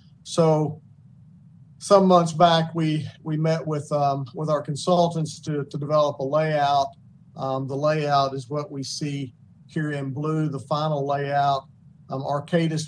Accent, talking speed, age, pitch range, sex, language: American, 150 wpm, 50-69, 140-155 Hz, male, English